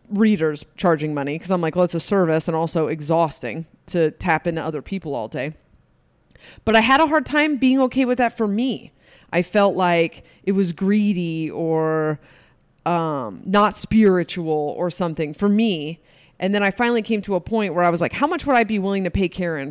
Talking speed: 205 wpm